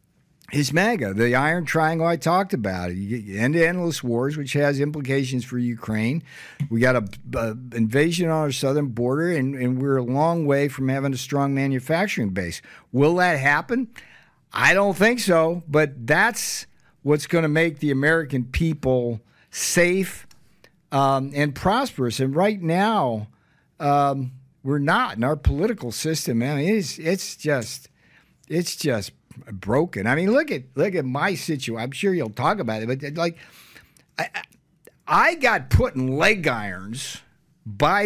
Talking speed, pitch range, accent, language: 155 wpm, 130-170 Hz, American, English